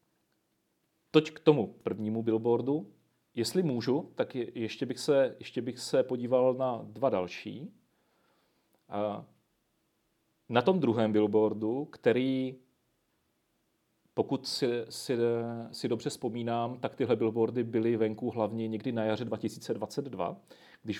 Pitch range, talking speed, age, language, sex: 110-135 Hz, 110 wpm, 40-59, Czech, male